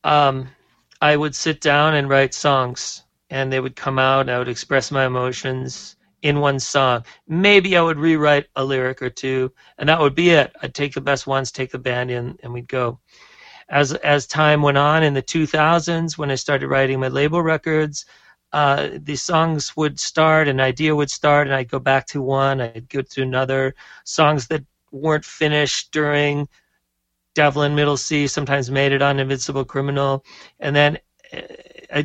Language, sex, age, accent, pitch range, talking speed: English, male, 40-59, American, 130-150 Hz, 185 wpm